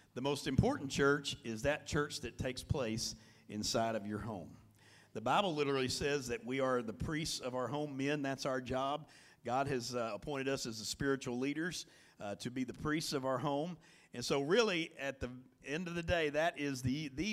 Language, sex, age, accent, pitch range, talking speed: English, male, 50-69, American, 120-160 Hz, 210 wpm